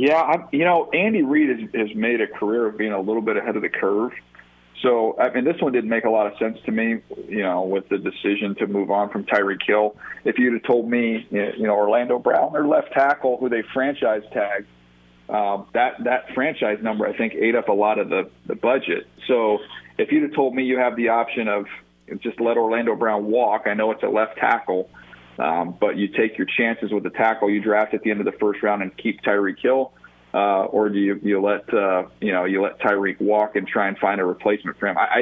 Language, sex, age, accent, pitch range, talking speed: English, male, 40-59, American, 100-115 Hz, 245 wpm